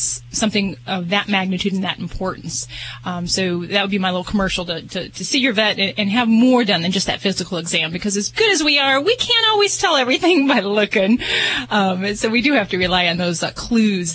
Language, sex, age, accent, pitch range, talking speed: English, female, 30-49, American, 195-280 Hz, 240 wpm